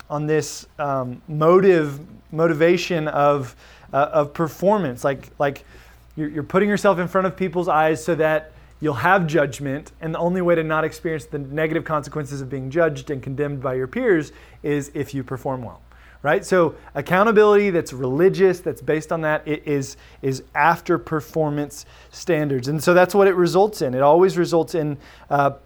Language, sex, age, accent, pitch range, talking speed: English, male, 20-39, American, 135-165 Hz, 175 wpm